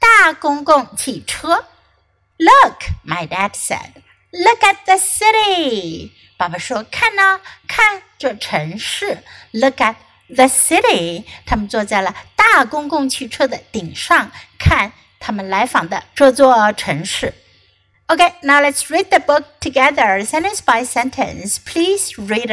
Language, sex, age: Chinese, female, 60-79